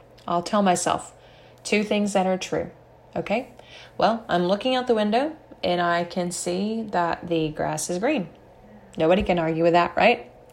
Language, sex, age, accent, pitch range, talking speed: English, female, 20-39, American, 175-230 Hz, 170 wpm